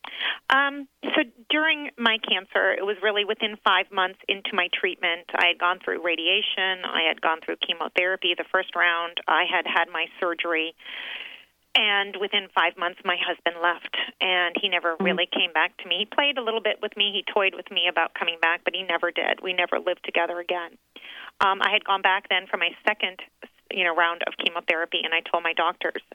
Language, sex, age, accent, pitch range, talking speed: English, female, 40-59, American, 175-220 Hz, 205 wpm